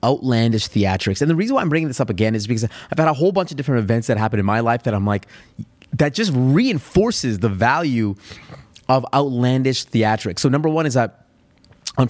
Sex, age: male, 30-49